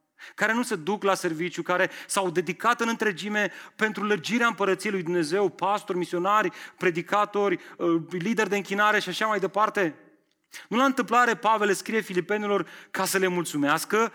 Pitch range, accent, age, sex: 180-220 Hz, native, 30-49, male